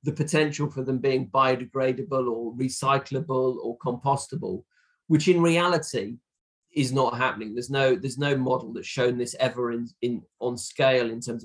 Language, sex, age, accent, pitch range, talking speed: English, male, 40-59, British, 125-150 Hz, 160 wpm